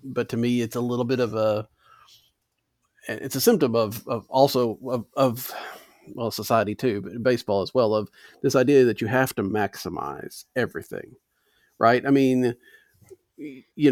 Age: 40-59